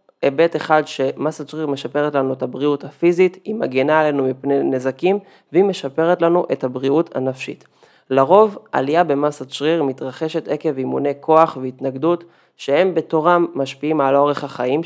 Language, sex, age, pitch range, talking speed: Hebrew, male, 20-39, 135-160 Hz, 140 wpm